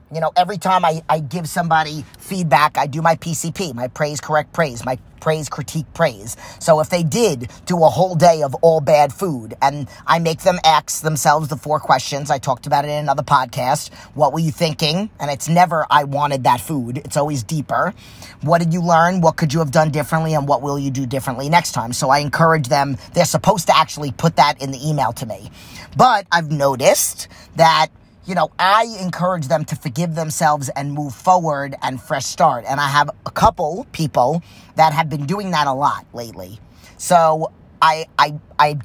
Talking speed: 205 wpm